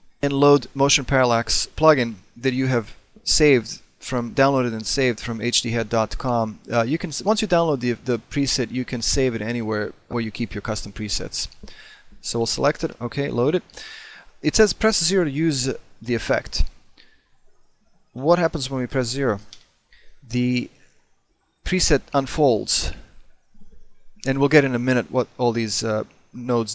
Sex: male